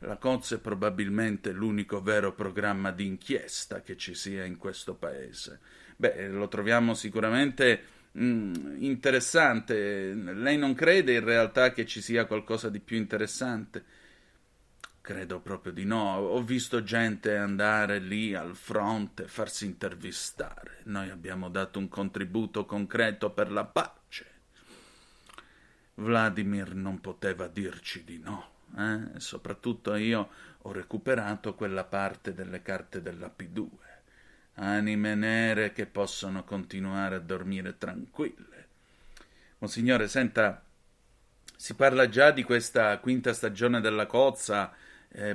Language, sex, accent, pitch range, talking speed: Italian, male, native, 100-115 Hz, 120 wpm